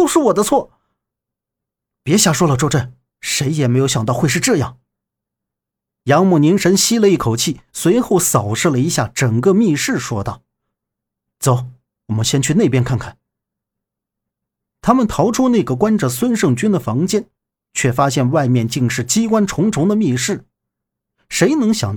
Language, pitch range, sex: Chinese, 125-200 Hz, male